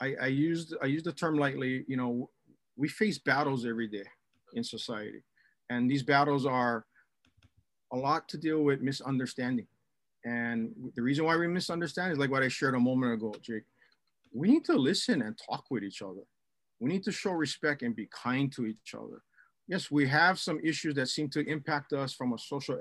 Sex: male